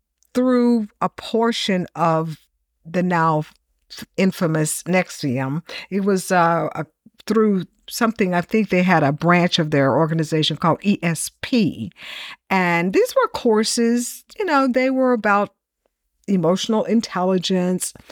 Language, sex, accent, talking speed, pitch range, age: English, female, American, 120 wpm, 155-215 Hz, 50-69